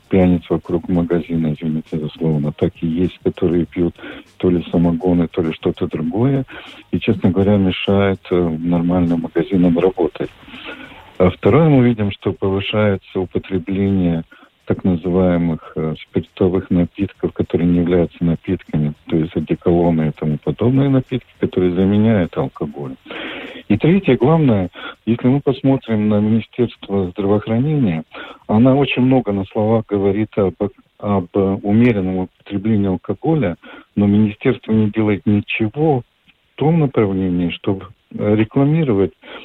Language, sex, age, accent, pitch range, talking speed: Russian, male, 50-69, native, 90-115 Hz, 125 wpm